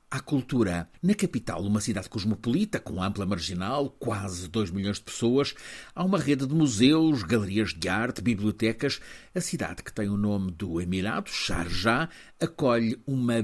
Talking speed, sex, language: 155 wpm, male, Portuguese